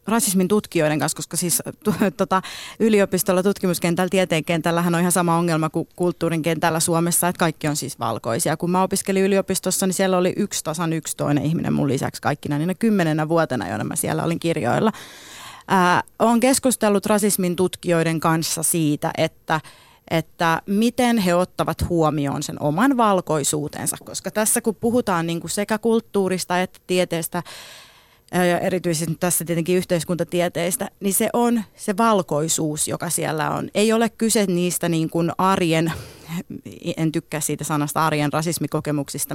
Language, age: Finnish, 30-49